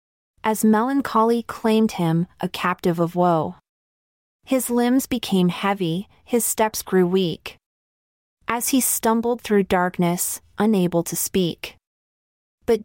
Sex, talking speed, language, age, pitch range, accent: female, 115 wpm, English, 30-49, 170-225 Hz, American